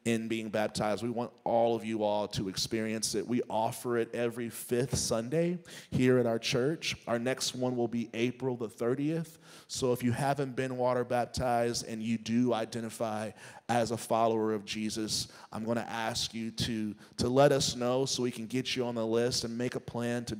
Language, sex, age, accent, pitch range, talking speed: English, male, 30-49, American, 105-125 Hz, 205 wpm